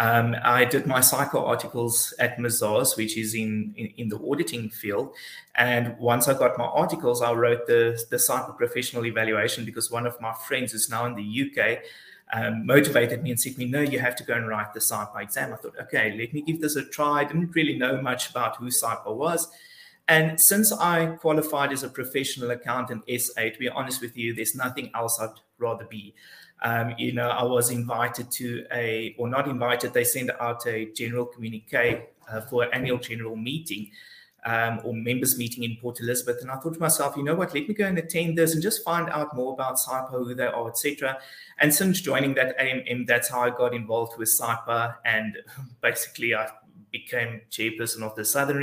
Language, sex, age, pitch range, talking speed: English, male, 30-49, 115-135 Hz, 210 wpm